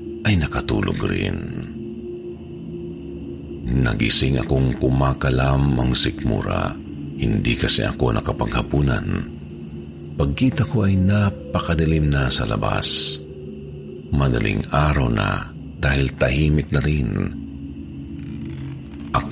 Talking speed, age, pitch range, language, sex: 80 wpm, 50-69, 70-85 Hz, Filipino, male